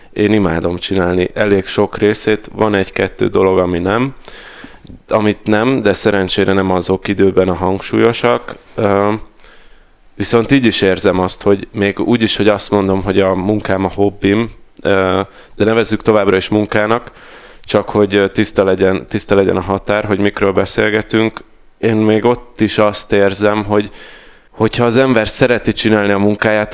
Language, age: Hungarian, 20-39